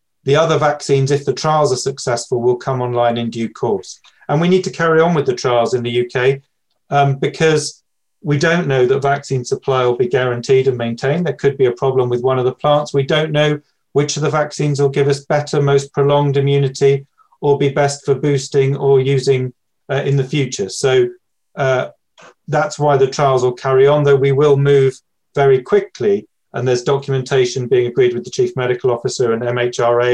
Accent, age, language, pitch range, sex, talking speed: British, 40-59, English, 125-155 Hz, male, 200 wpm